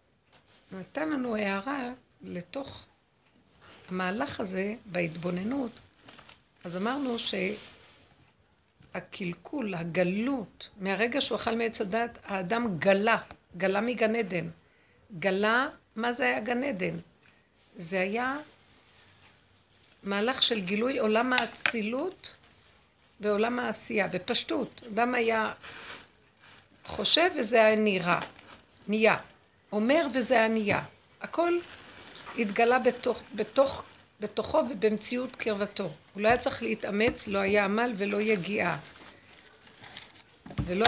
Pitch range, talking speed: 195-245 Hz, 95 wpm